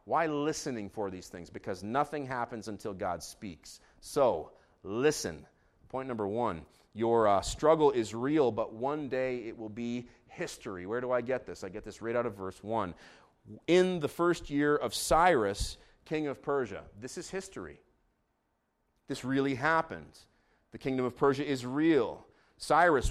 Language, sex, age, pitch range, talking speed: English, male, 30-49, 115-150 Hz, 165 wpm